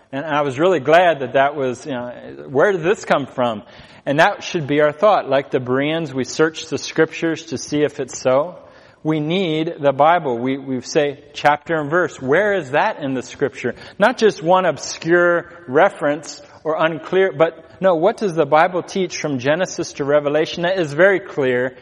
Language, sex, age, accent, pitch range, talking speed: English, male, 30-49, American, 130-165 Hz, 195 wpm